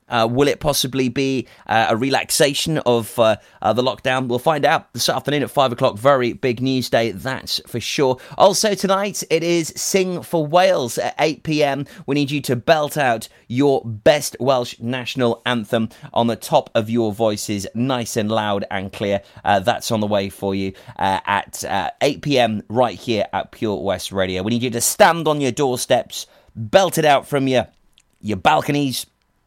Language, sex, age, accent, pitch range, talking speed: English, male, 30-49, British, 105-145 Hz, 185 wpm